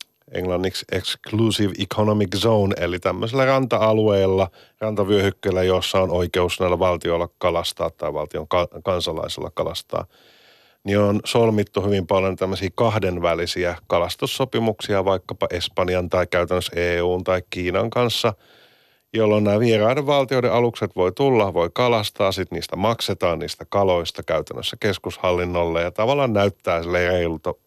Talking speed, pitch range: 120 wpm, 90-115 Hz